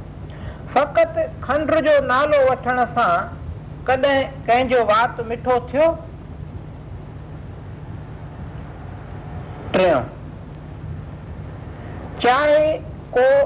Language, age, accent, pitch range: Hindi, 50-69, native, 240-305 Hz